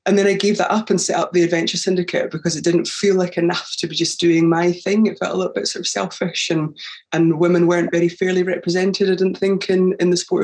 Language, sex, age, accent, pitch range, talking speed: English, female, 20-39, British, 155-175 Hz, 265 wpm